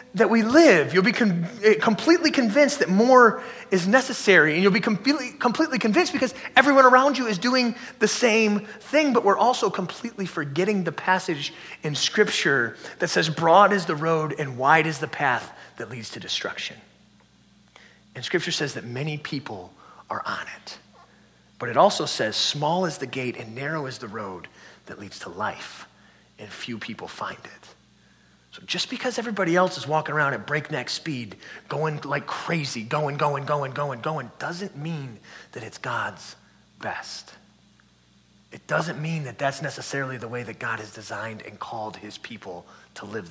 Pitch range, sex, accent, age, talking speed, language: 145-220 Hz, male, American, 30-49, 170 wpm, English